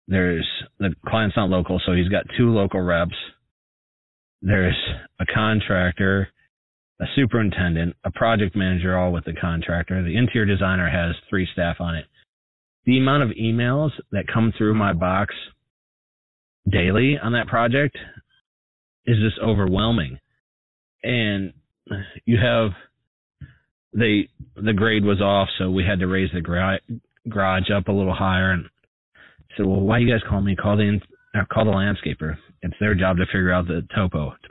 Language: English